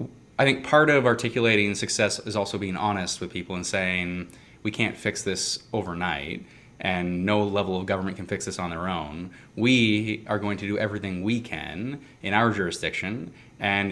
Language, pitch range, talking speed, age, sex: English, 100-120 Hz, 180 wpm, 20-39, male